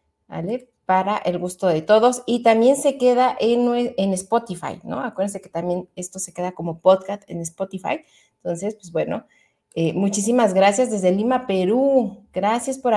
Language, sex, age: Spanish, female, 30-49